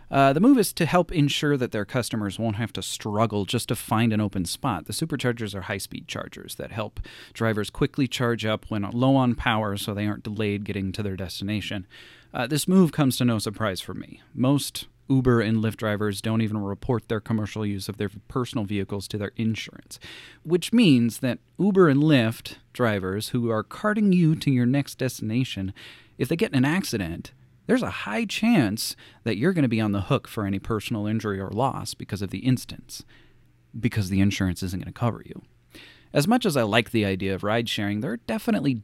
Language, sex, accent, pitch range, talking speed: English, male, American, 105-135 Hz, 205 wpm